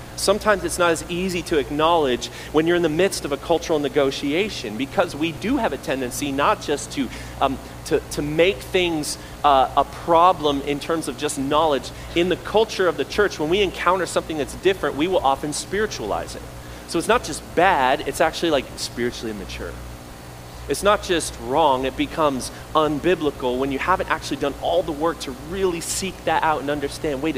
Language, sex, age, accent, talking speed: English, male, 30-49, American, 195 wpm